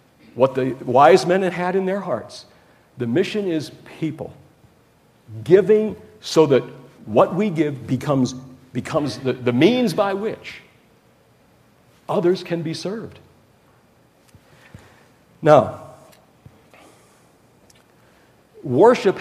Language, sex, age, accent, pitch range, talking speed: English, male, 60-79, American, 120-160 Hz, 95 wpm